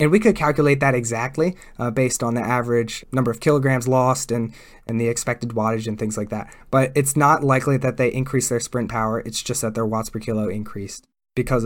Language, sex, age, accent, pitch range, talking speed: English, male, 20-39, American, 120-150 Hz, 220 wpm